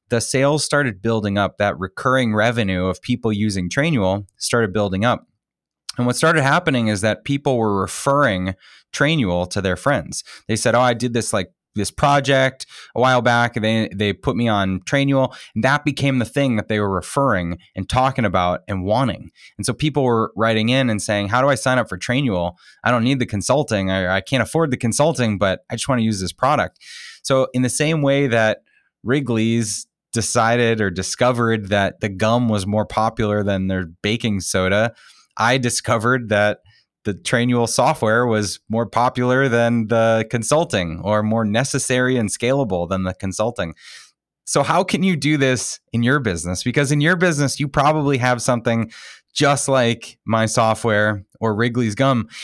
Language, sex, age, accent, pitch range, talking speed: English, male, 20-39, American, 105-130 Hz, 180 wpm